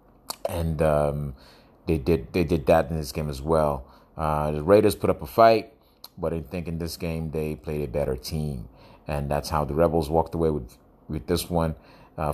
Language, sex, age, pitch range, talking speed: English, male, 30-49, 75-95 Hz, 205 wpm